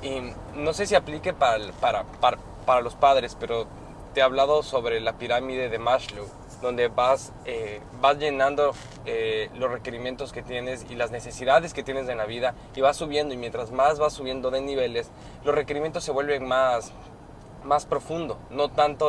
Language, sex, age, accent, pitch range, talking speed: Spanish, male, 20-39, Mexican, 120-150 Hz, 180 wpm